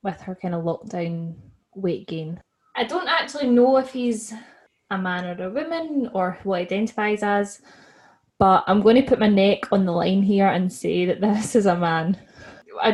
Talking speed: 190 wpm